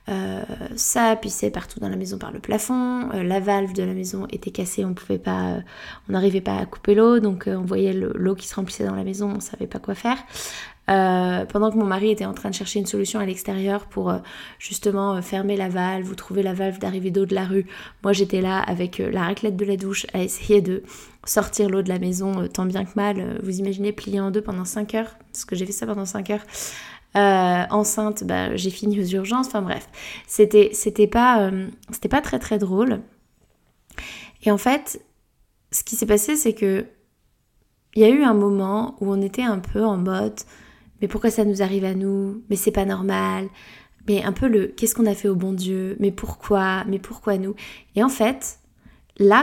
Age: 20-39